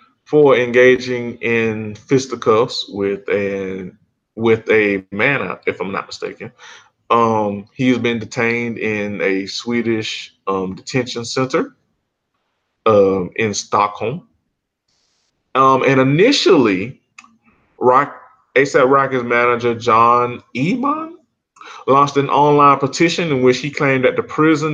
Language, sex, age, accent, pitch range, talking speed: English, male, 20-39, American, 115-150 Hz, 115 wpm